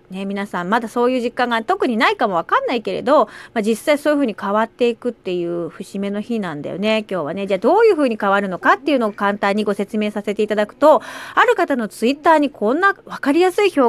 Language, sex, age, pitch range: Japanese, female, 40-59, 200-275 Hz